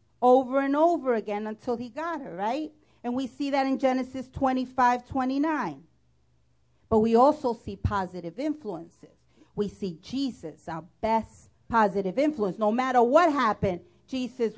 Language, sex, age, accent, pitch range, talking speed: English, female, 40-59, American, 205-300 Hz, 145 wpm